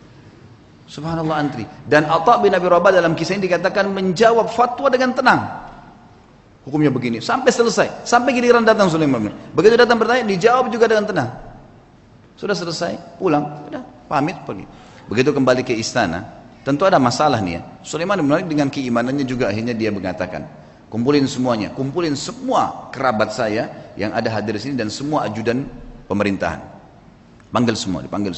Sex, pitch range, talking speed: male, 105-165 Hz, 150 wpm